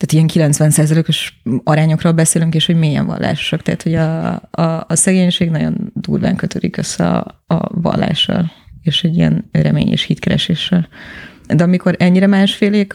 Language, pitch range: Hungarian, 160-180 Hz